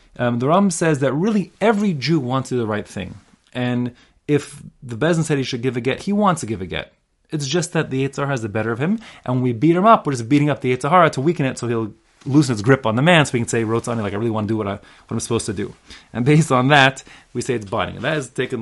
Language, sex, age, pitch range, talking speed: English, male, 30-49, 110-150 Hz, 295 wpm